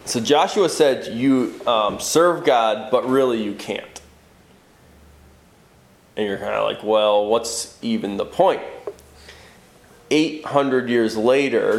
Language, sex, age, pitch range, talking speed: English, male, 20-39, 110-150 Hz, 120 wpm